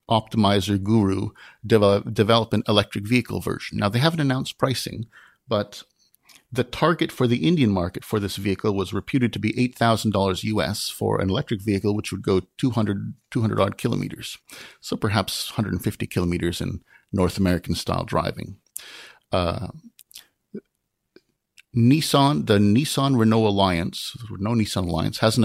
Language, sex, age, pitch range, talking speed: English, male, 50-69, 95-120 Hz, 140 wpm